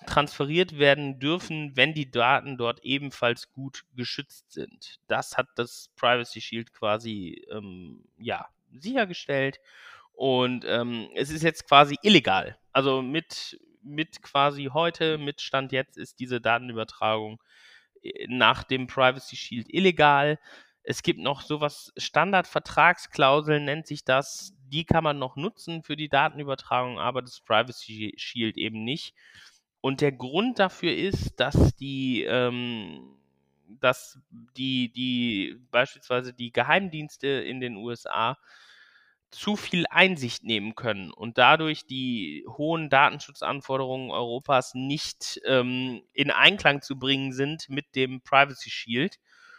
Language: German